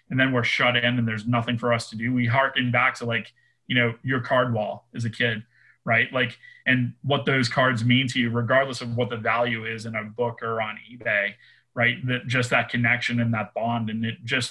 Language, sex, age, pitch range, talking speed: English, male, 30-49, 115-130 Hz, 235 wpm